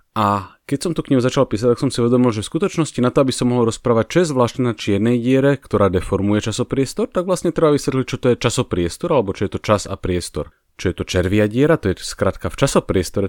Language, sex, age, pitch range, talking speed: English, male, 30-49, 100-130 Hz, 235 wpm